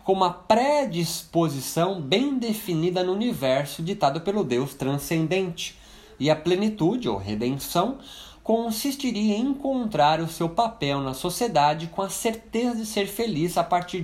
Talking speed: 135 wpm